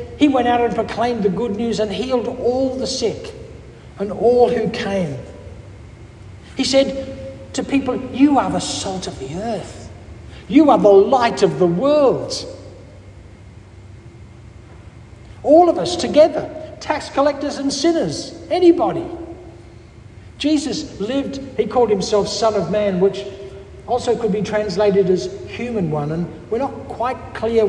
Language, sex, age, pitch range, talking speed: English, male, 60-79, 165-250 Hz, 140 wpm